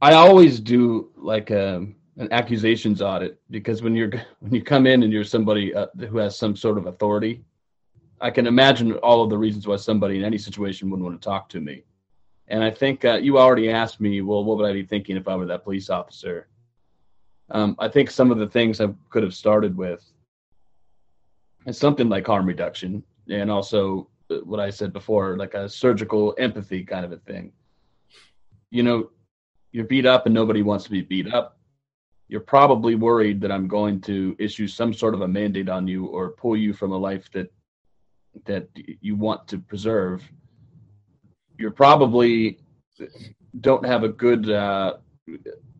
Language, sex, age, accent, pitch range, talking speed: English, male, 30-49, American, 100-115 Hz, 180 wpm